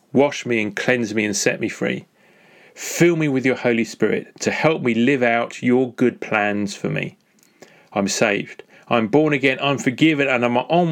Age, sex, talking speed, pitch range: 30-49, male, 190 wpm, 115-145 Hz